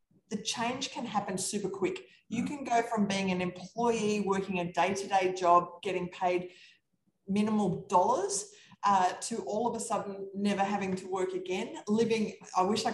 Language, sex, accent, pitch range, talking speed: English, female, Australian, 180-220 Hz, 165 wpm